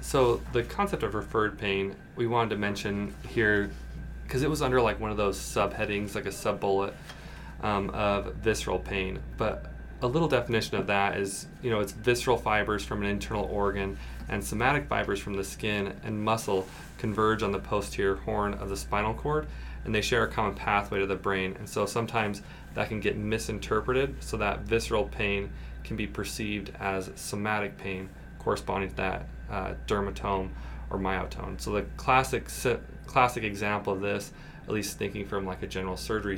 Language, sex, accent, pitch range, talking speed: English, male, American, 95-105 Hz, 180 wpm